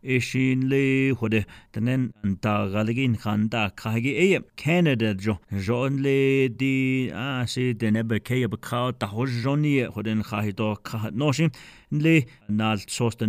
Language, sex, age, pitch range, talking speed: English, male, 30-49, 110-135 Hz, 130 wpm